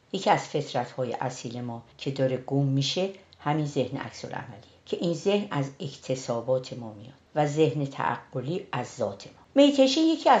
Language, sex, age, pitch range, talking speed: Persian, female, 50-69, 130-185 Hz, 160 wpm